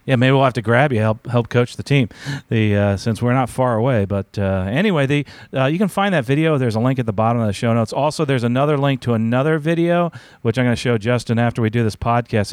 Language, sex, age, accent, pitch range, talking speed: English, male, 40-59, American, 110-145 Hz, 275 wpm